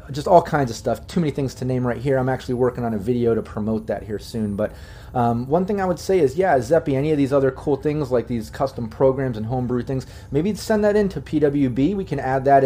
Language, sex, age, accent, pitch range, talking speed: English, male, 30-49, American, 110-135 Hz, 265 wpm